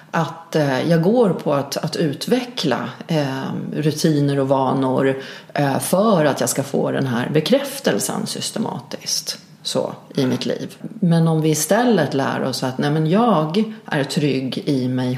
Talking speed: 155 wpm